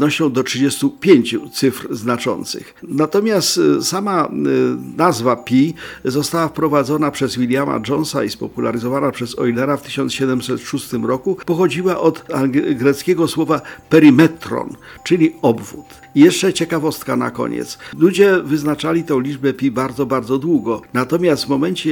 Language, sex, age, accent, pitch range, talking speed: Polish, male, 50-69, native, 125-155 Hz, 115 wpm